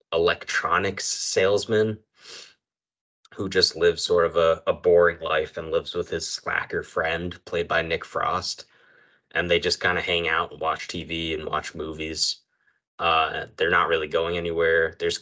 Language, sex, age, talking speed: English, male, 20-39, 160 wpm